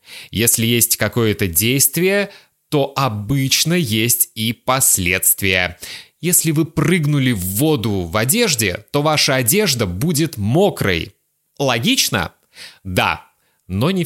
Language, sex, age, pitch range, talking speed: Russian, male, 20-39, 105-175 Hz, 105 wpm